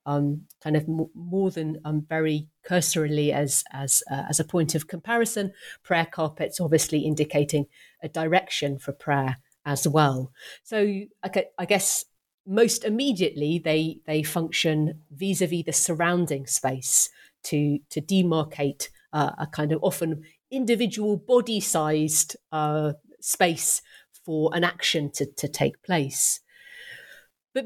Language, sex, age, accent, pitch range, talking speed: English, female, 40-59, British, 150-190 Hz, 130 wpm